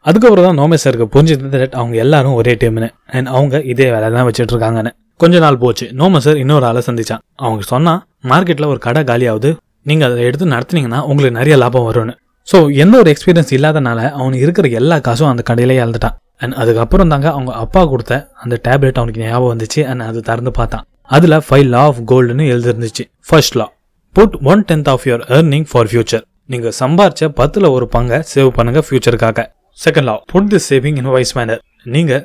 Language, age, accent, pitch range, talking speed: Tamil, 20-39, native, 120-150 Hz, 165 wpm